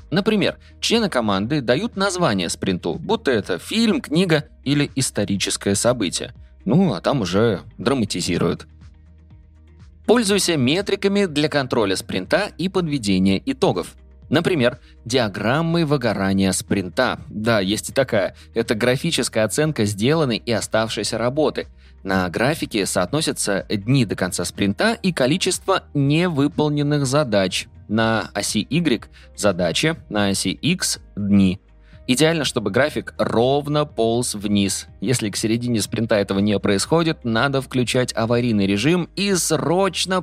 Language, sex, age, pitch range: Russian, male, 20-39, 100-150 Hz